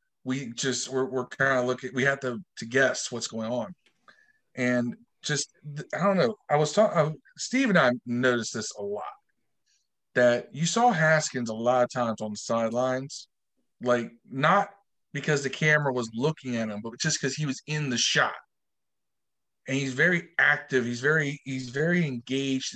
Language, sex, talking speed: English, male, 175 wpm